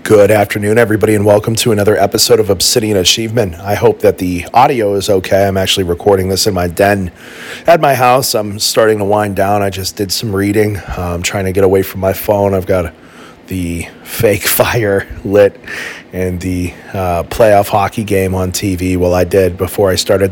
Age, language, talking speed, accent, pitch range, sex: 30-49, English, 190 wpm, American, 95-110 Hz, male